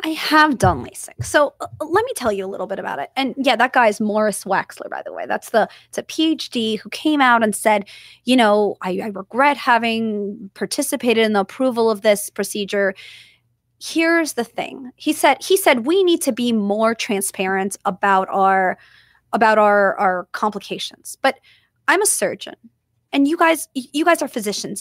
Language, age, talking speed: English, 20-39, 190 wpm